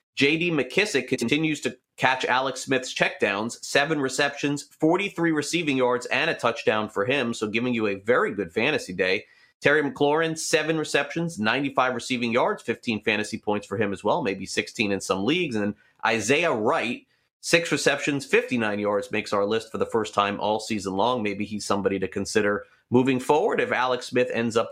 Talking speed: 180 wpm